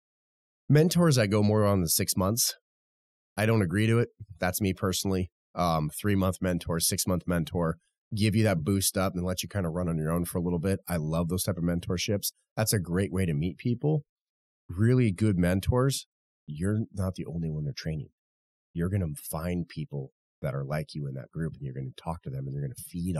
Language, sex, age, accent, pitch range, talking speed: English, male, 30-49, American, 80-100 Hz, 220 wpm